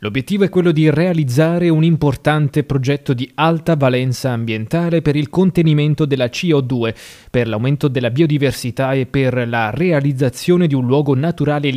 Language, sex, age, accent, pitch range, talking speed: Italian, male, 30-49, native, 130-155 Hz, 150 wpm